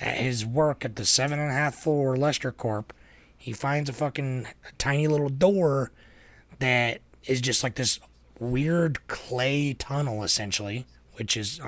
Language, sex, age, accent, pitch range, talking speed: English, male, 30-49, American, 110-145 Hz, 155 wpm